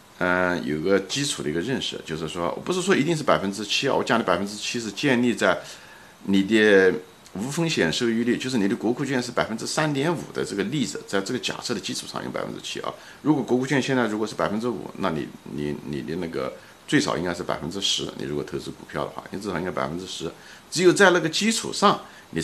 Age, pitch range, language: 50-69, 90-125 Hz, Chinese